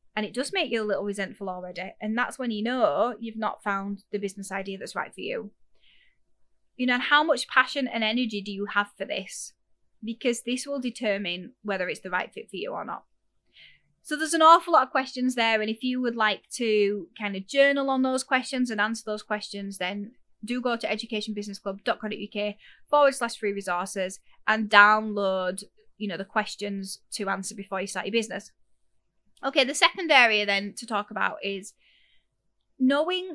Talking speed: 190 wpm